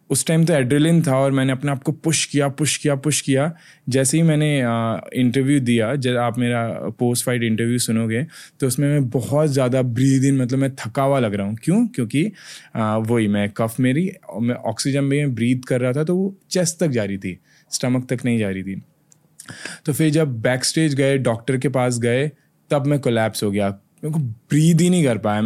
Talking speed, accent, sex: 205 wpm, native, male